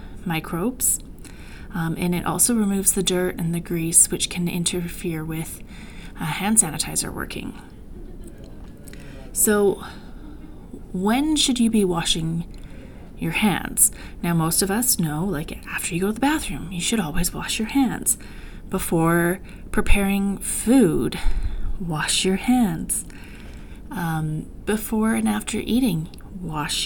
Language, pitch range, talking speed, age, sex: English, 175-225 Hz, 125 wpm, 30-49, female